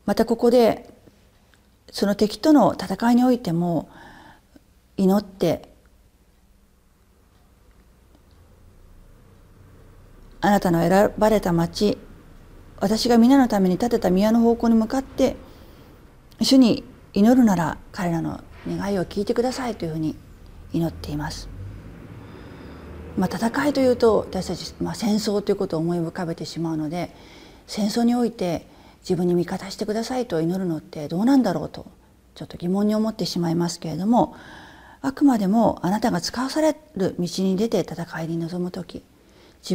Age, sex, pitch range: 40-59, female, 160-225 Hz